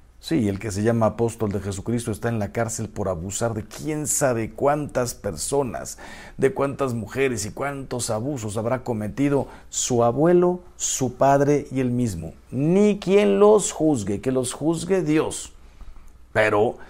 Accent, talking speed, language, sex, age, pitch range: Mexican, 155 wpm, Spanish, male, 50-69, 100-135 Hz